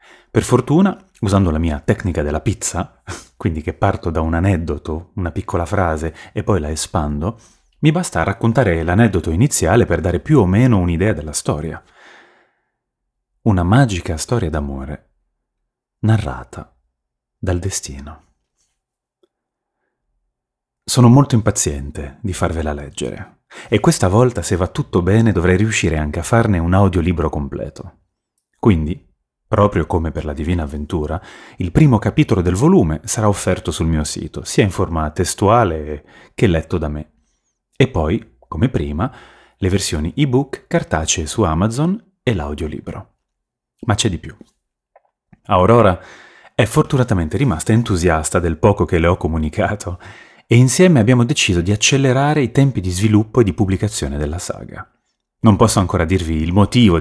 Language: Italian